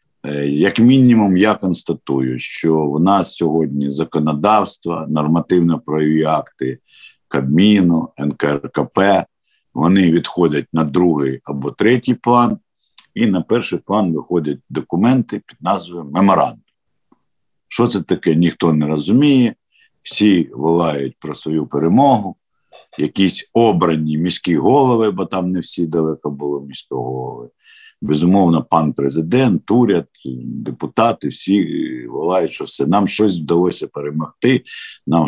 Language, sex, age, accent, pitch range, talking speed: Ukrainian, male, 50-69, native, 75-100 Hz, 110 wpm